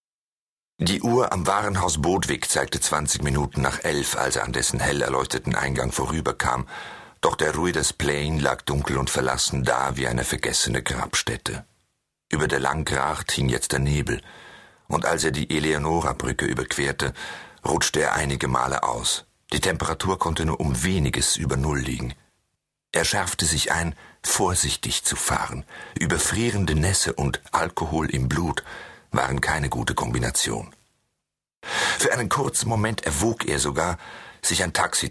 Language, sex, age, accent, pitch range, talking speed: German, male, 50-69, German, 65-80 Hz, 145 wpm